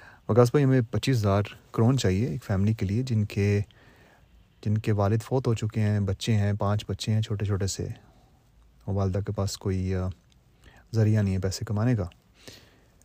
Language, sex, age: Urdu, male, 30-49